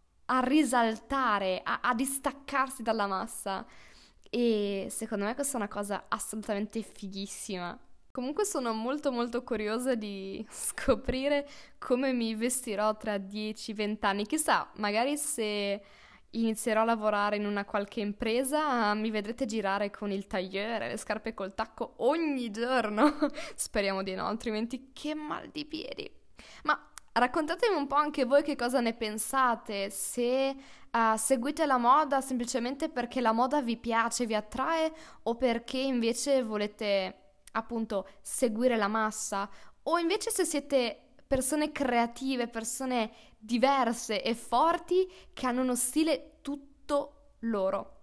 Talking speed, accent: 130 wpm, native